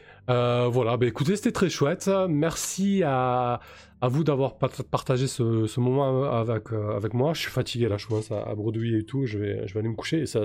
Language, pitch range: French, 110-135 Hz